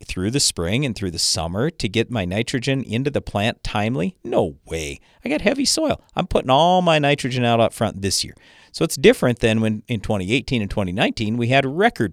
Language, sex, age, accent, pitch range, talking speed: English, male, 50-69, American, 95-140 Hz, 215 wpm